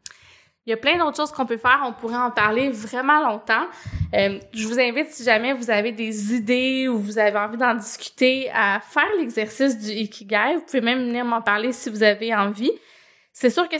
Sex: female